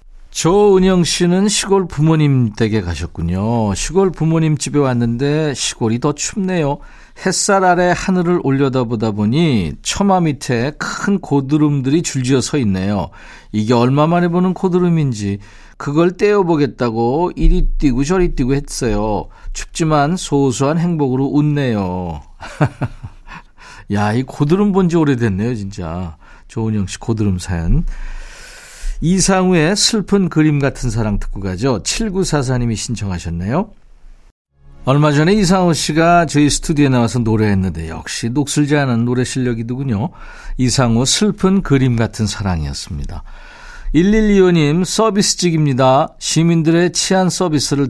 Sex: male